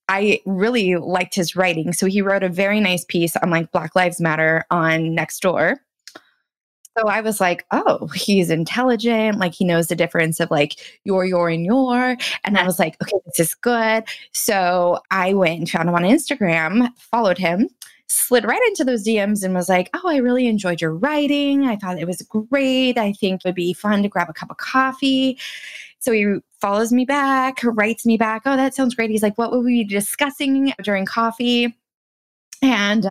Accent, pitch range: American, 180-235 Hz